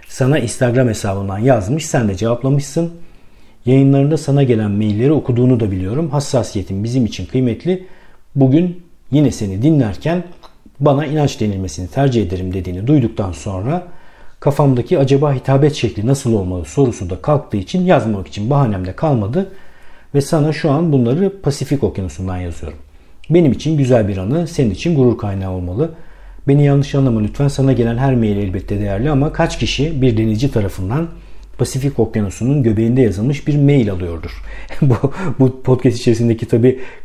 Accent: native